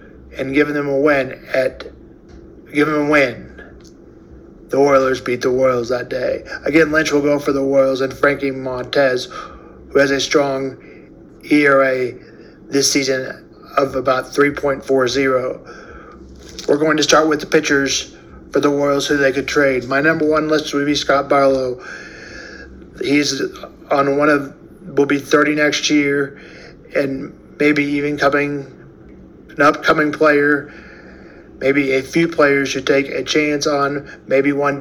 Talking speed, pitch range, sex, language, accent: 150 wpm, 135-145 Hz, male, English, American